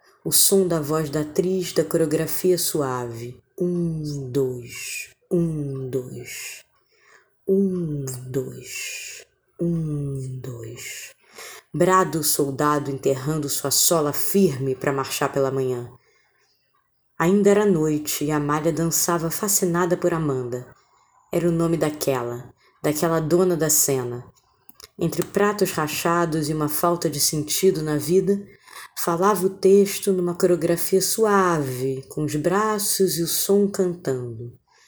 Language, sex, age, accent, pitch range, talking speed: Portuguese, female, 20-39, Brazilian, 140-195 Hz, 115 wpm